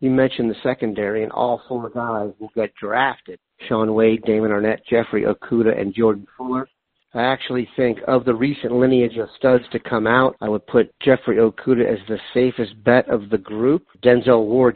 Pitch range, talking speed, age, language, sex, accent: 110-130 Hz, 185 wpm, 50-69, English, male, American